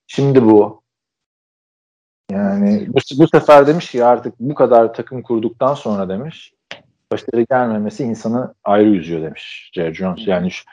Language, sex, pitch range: Turkish, male, 105-170 Hz